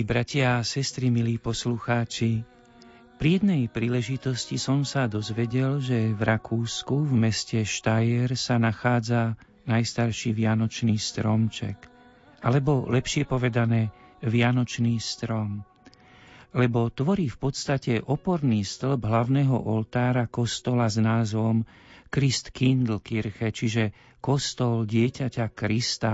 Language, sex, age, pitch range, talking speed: Slovak, male, 50-69, 110-130 Hz, 100 wpm